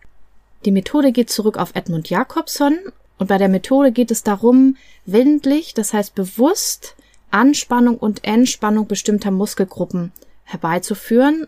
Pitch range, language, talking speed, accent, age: 185-245 Hz, German, 125 wpm, German, 30-49